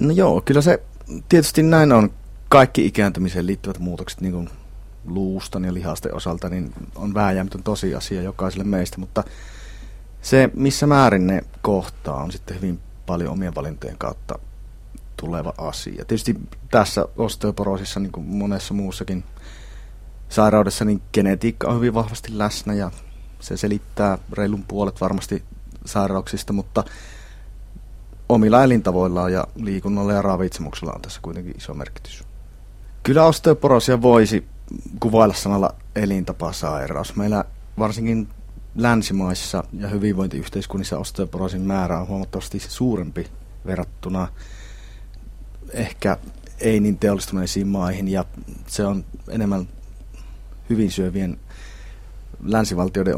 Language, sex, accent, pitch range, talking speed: Finnish, male, native, 95-105 Hz, 110 wpm